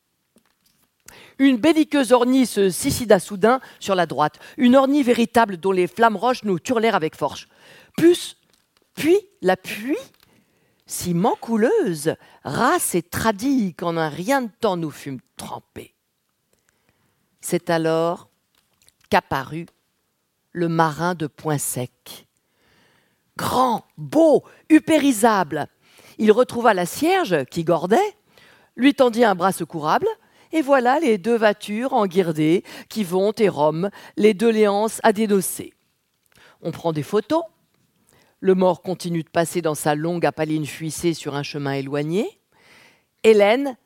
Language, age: French, 50-69